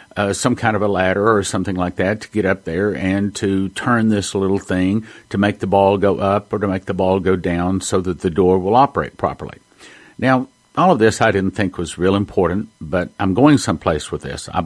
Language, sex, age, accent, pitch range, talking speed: English, male, 50-69, American, 95-125 Hz, 235 wpm